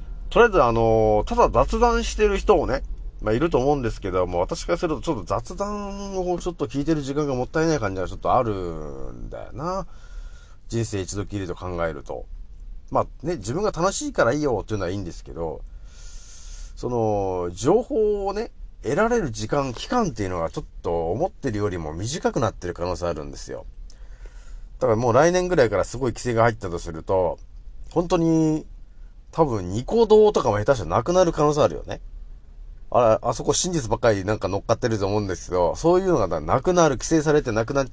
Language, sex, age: Japanese, male, 40-59